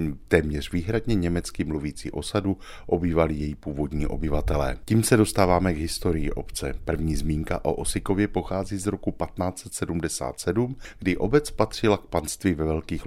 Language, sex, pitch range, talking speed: Czech, male, 80-100 Hz, 140 wpm